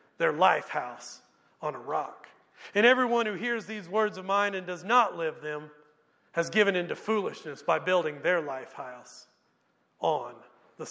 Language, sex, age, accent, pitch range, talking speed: English, male, 40-59, American, 150-195 Hz, 165 wpm